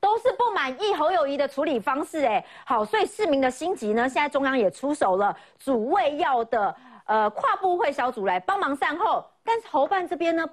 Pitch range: 230-335 Hz